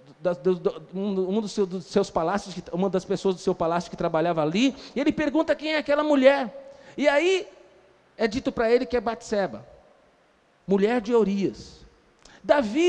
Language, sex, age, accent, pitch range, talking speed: Portuguese, male, 40-59, Brazilian, 185-275 Hz, 160 wpm